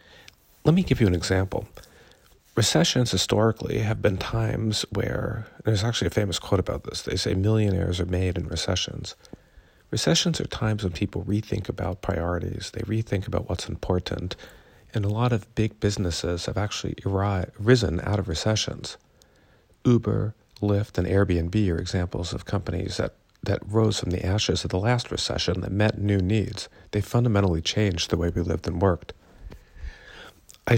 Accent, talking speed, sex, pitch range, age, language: American, 165 wpm, male, 90-110 Hz, 50-69, English